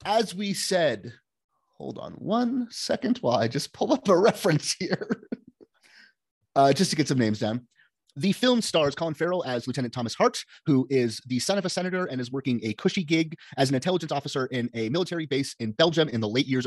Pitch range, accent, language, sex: 125-175 Hz, American, English, male